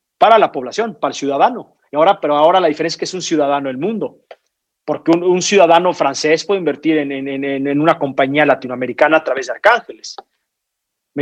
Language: Spanish